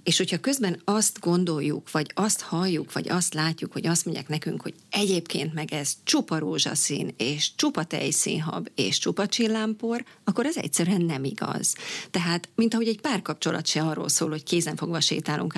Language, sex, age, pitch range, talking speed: Hungarian, female, 40-59, 160-210 Hz, 165 wpm